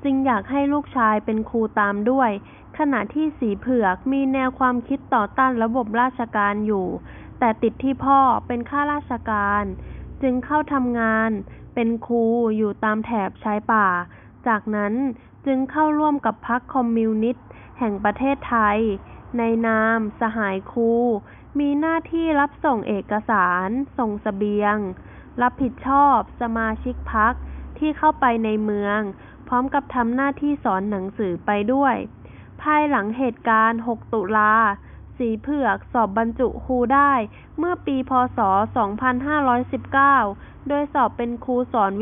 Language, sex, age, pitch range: Thai, female, 20-39, 220-270 Hz